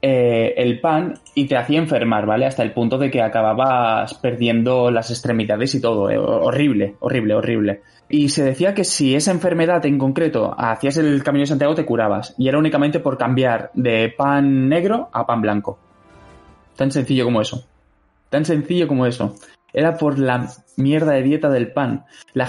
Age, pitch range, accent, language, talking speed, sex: 20-39, 125-155 Hz, Spanish, Spanish, 175 wpm, male